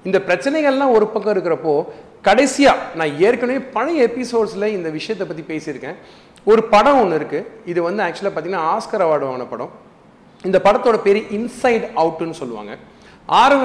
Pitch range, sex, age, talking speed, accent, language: 150-220 Hz, male, 40-59, 140 wpm, native, Tamil